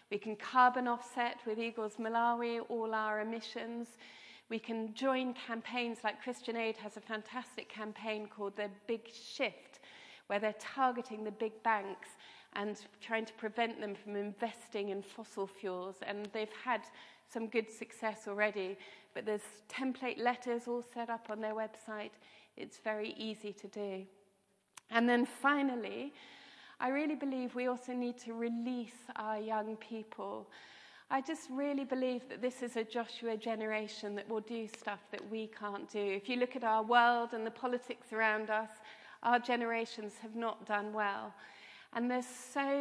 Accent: British